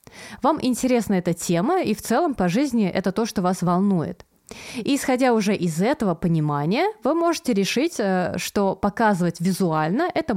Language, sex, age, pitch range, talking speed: Russian, female, 20-39, 180-225 Hz, 155 wpm